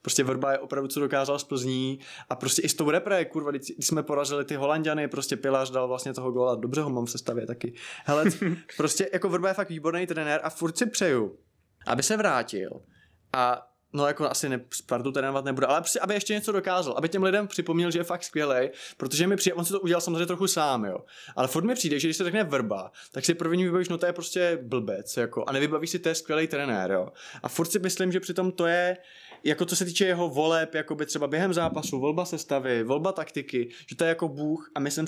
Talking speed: 235 wpm